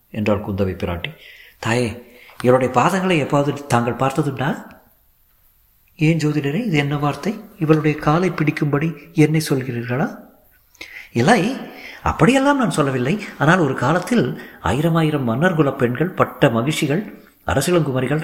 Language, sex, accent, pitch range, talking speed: Tamil, male, native, 125-165 Hz, 110 wpm